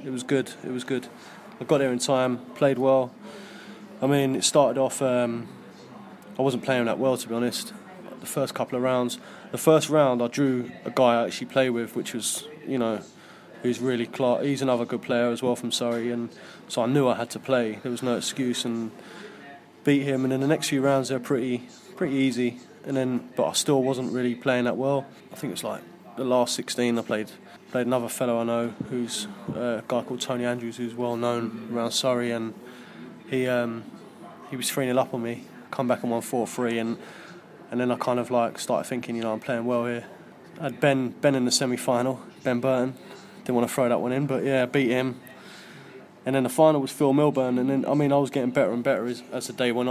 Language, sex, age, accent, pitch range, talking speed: English, male, 20-39, British, 120-135 Hz, 225 wpm